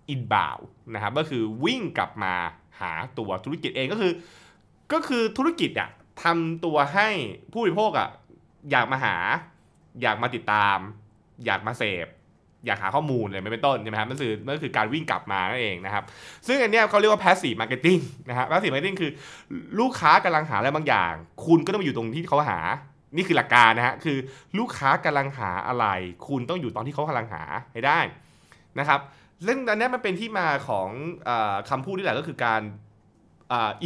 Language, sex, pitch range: Thai, male, 110-165 Hz